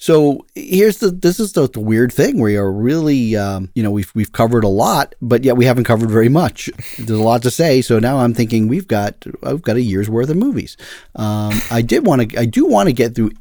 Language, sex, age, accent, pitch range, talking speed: English, male, 40-59, American, 100-135 Hz, 245 wpm